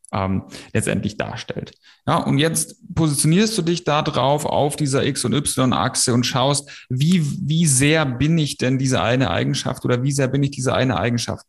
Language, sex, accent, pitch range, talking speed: German, male, German, 115-140 Hz, 185 wpm